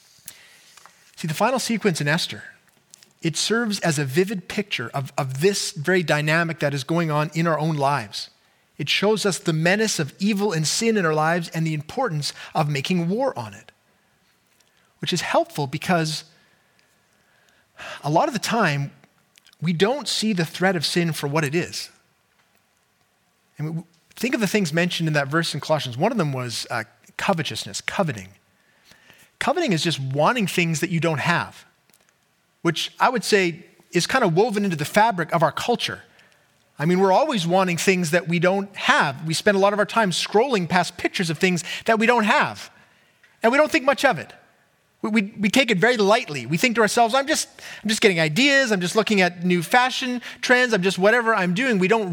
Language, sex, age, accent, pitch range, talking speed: English, male, 30-49, American, 160-215 Hz, 200 wpm